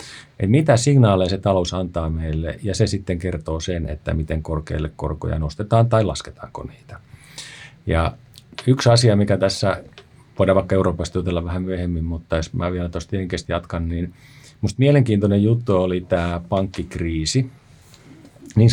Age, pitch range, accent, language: 50-69, 85-115 Hz, native, Finnish